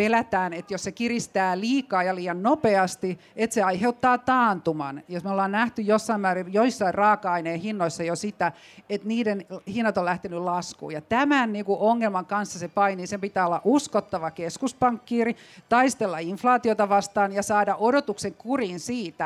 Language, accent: Finnish, native